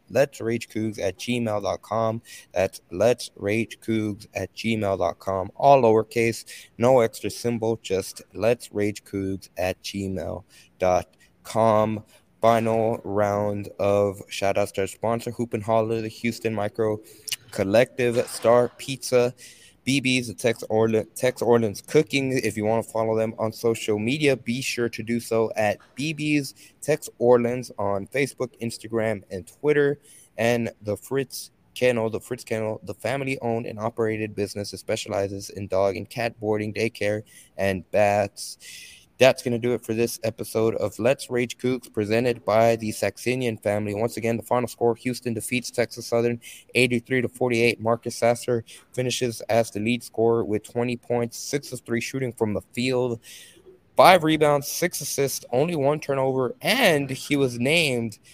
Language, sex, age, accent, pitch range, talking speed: English, male, 20-39, American, 110-125 Hz, 150 wpm